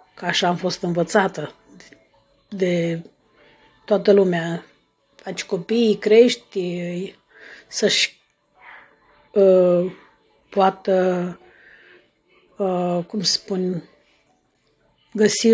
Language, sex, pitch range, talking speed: Romanian, female, 180-215 Hz, 70 wpm